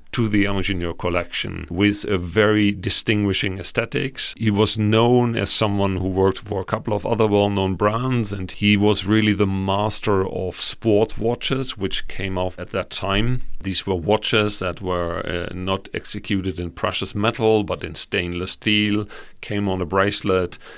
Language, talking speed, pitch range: English, 165 wpm, 95-105 Hz